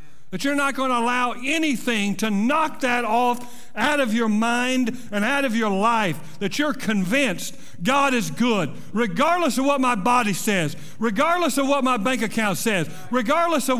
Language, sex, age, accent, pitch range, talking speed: English, male, 60-79, American, 160-245 Hz, 180 wpm